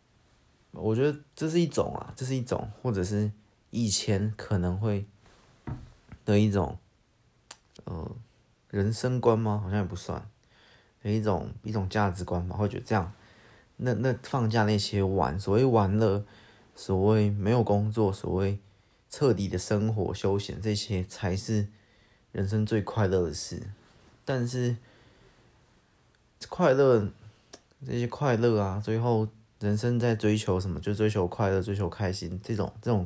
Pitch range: 100-115 Hz